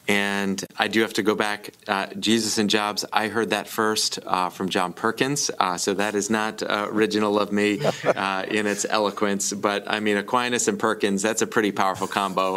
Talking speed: 205 wpm